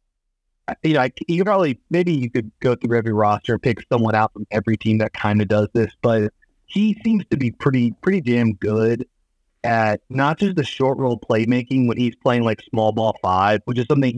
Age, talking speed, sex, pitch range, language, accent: 30-49, 210 wpm, male, 105-125 Hz, English, American